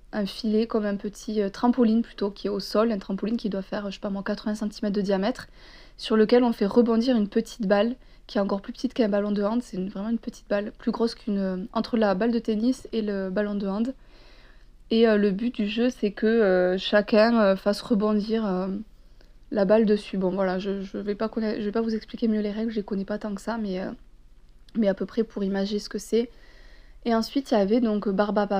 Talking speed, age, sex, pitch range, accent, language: 245 wpm, 20-39, female, 200-230 Hz, French, French